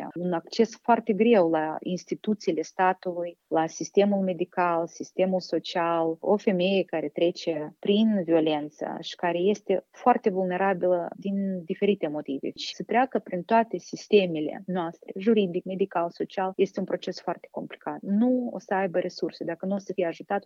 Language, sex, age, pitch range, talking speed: Romanian, female, 30-49, 175-210 Hz, 150 wpm